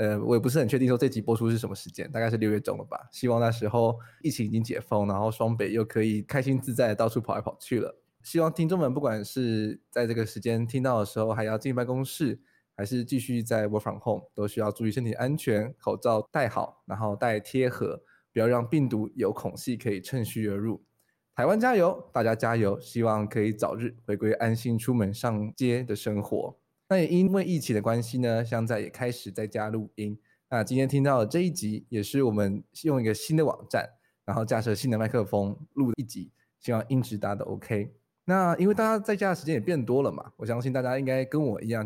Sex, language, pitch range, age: male, Chinese, 110-135 Hz, 20-39